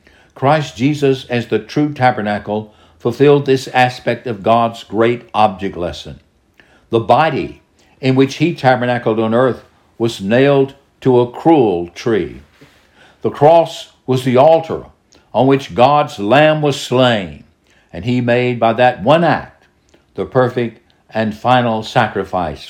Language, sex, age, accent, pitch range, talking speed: English, male, 60-79, American, 95-130 Hz, 135 wpm